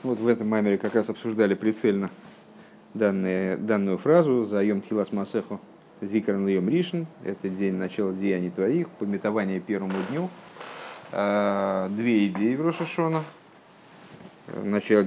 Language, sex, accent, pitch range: Russian, male, native, 100-125 Hz